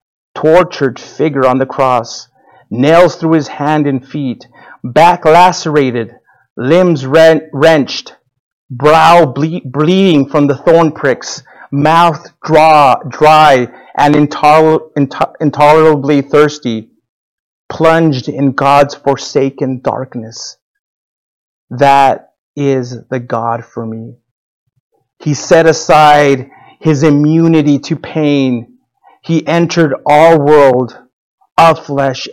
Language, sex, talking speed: English, male, 95 wpm